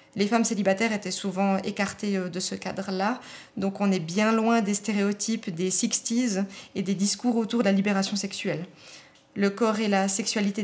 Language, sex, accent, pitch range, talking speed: French, female, French, 205-240 Hz, 180 wpm